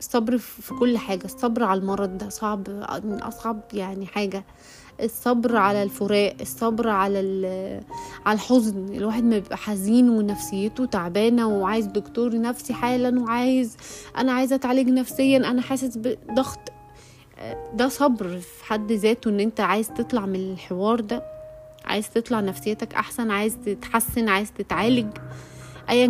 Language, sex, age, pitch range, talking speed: Arabic, female, 20-39, 195-235 Hz, 135 wpm